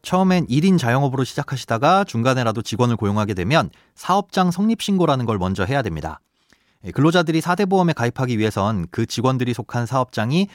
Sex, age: male, 30-49